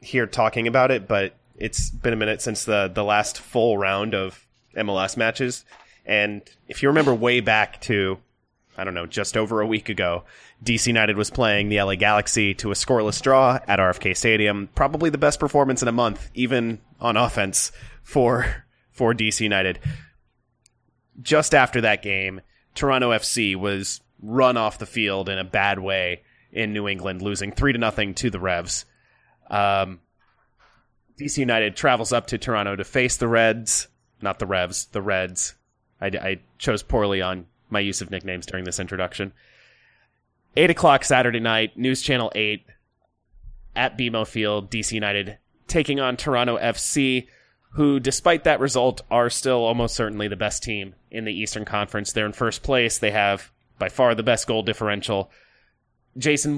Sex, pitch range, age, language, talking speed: male, 100-125 Hz, 30-49, English, 170 wpm